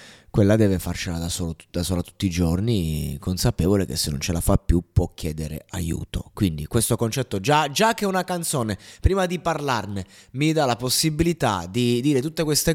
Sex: male